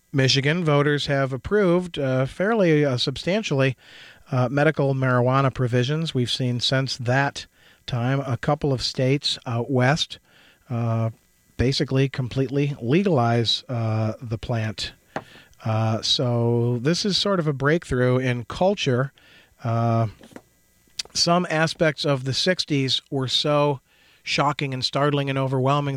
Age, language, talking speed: 40-59, English, 120 wpm